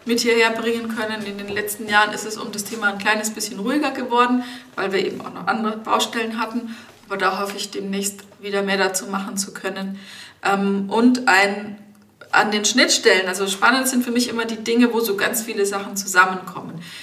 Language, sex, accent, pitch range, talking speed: German, female, German, 200-240 Hz, 200 wpm